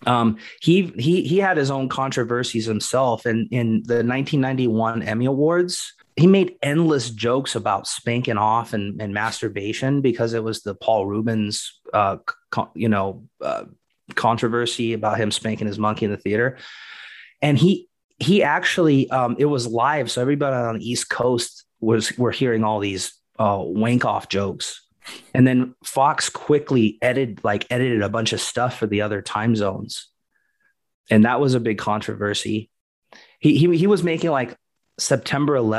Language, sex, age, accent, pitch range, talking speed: English, male, 30-49, American, 110-140 Hz, 165 wpm